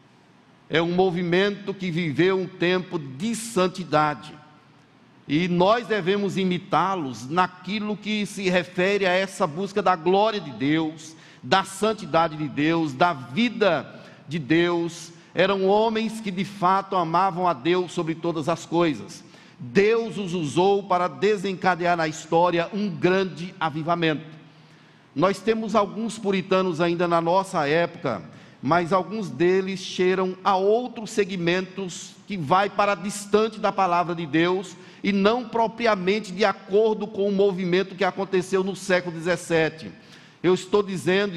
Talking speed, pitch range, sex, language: 135 wpm, 170-195 Hz, male, Portuguese